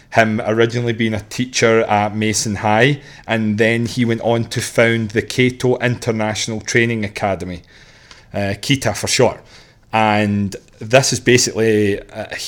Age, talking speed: 30-49, 140 wpm